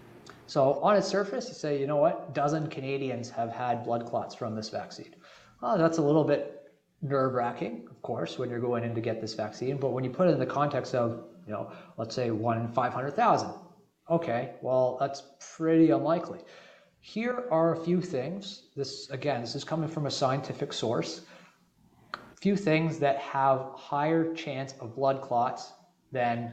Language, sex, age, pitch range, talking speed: English, male, 30-49, 120-160 Hz, 185 wpm